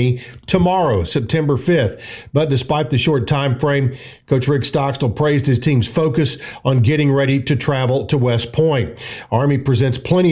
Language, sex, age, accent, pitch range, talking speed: English, male, 50-69, American, 125-155 Hz, 155 wpm